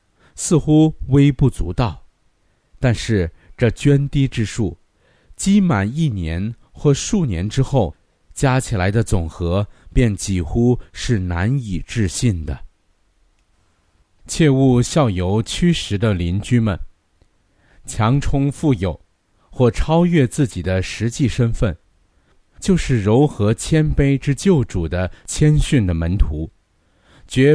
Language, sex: Chinese, male